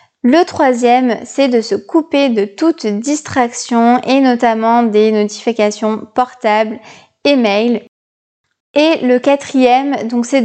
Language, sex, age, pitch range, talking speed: French, female, 20-39, 230-270 Hz, 120 wpm